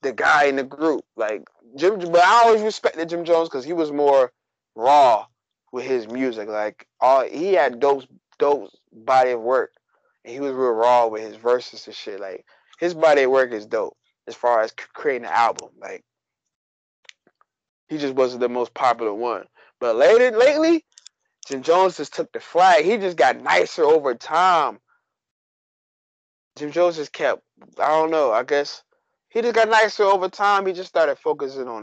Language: English